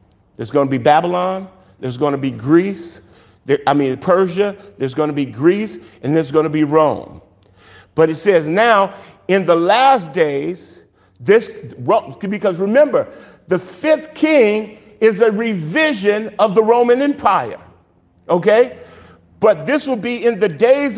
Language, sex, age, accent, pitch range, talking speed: English, male, 50-69, American, 150-220 Hz, 150 wpm